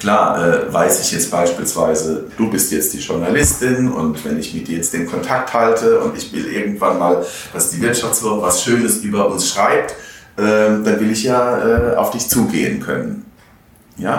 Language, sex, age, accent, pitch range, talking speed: German, male, 40-59, German, 95-125 Hz, 180 wpm